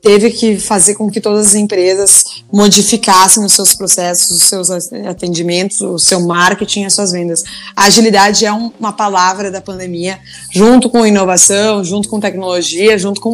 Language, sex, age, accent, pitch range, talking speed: Portuguese, female, 20-39, Brazilian, 185-215 Hz, 170 wpm